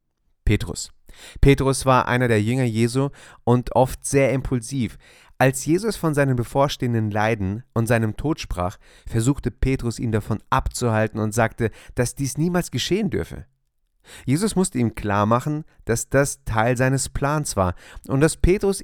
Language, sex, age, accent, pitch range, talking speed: German, male, 30-49, German, 105-140 Hz, 150 wpm